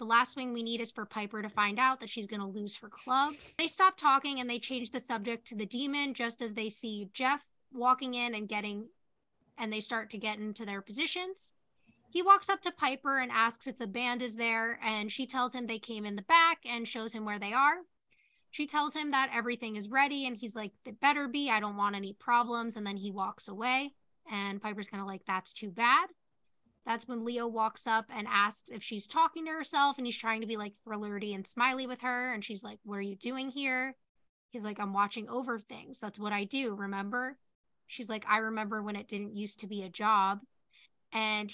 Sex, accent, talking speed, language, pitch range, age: female, American, 230 wpm, English, 210-260 Hz, 10-29